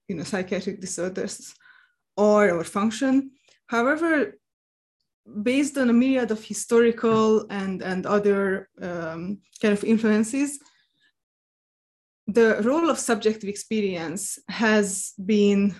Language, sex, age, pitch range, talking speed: English, female, 20-39, 200-245 Hz, 105 wpm